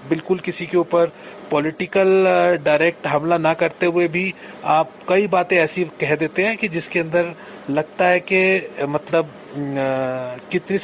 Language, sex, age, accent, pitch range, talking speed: Hindi, male, 30-49, native, 150-190 Hz, 145 wpm